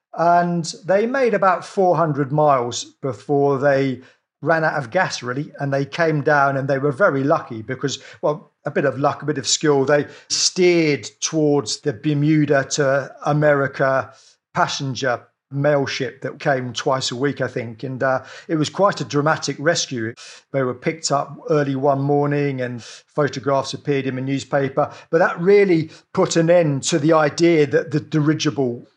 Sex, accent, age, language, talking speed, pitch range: male, British, 40-59, English, 170 wpm, 140-170 Hz